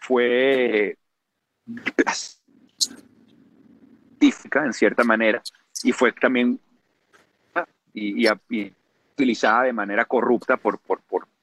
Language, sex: Spanish, male